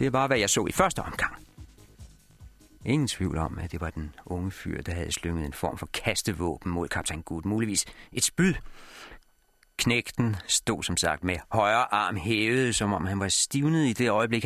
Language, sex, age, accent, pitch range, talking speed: Danish, male, 40-59, native, 85-105 Hz, 195 wpm